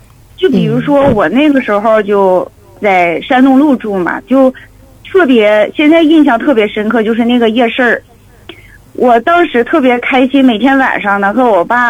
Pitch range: 210-280 Hz